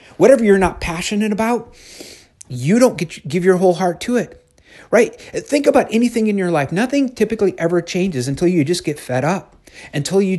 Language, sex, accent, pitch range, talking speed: English, male, American, 130-185 Hz, 185 wpm